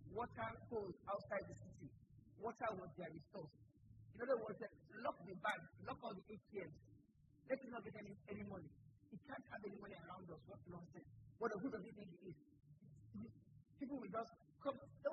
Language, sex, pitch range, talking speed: English, male, 130-195 Hz, 185 wpm